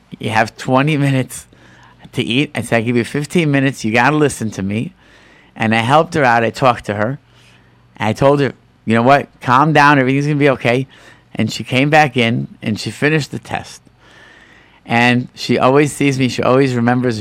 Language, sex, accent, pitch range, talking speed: English, male, American, 110-140 Hz, 205 wpm